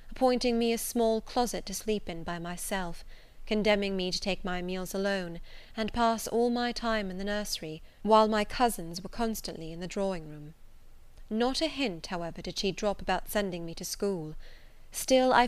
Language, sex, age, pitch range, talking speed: English, female, 30-49, 175-220 Hz, 180 wpm